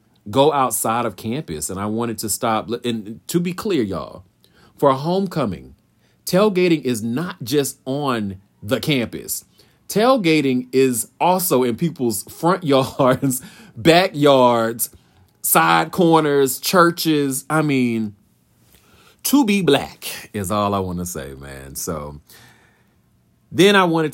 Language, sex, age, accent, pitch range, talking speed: English, male, 40-59, American, 90-130 Hz, 125 wpm